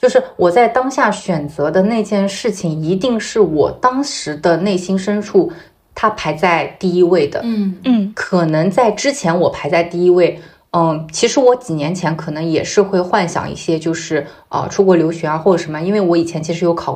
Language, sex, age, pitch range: Chinese, female, 20-39, 170-215 Hz